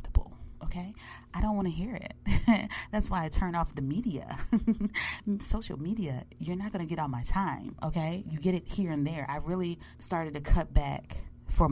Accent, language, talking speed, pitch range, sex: American, English, 195 wpm, 135-200 Hz, female